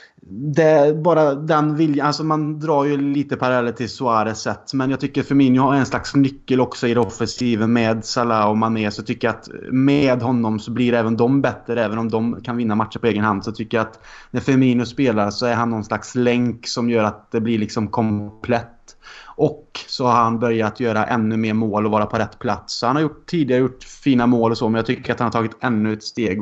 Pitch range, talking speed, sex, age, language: 110-125 Hz, 230 wpm, male, 20-39, Swedish